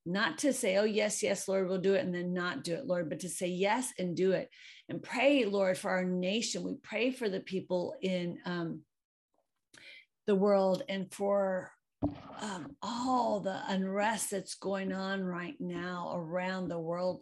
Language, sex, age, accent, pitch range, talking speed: English, female, 40-59, American, 170-200 Hz, 180 wpm